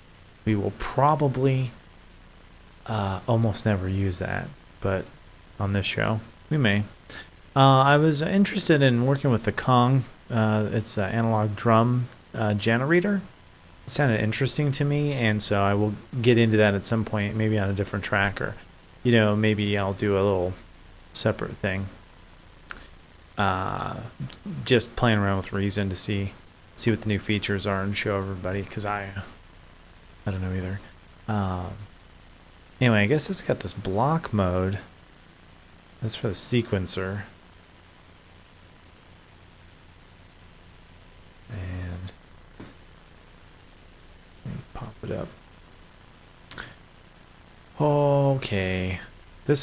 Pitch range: 90-115 Hz